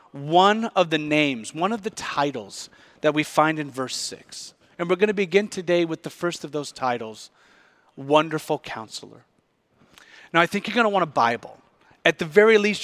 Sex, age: male, 30-49